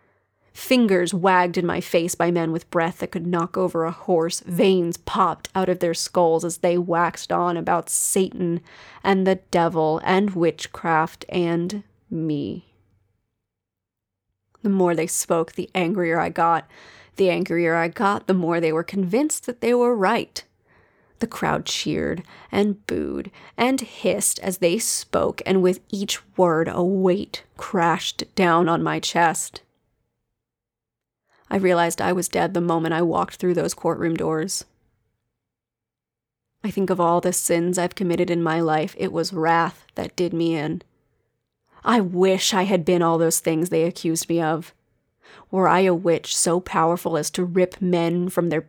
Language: English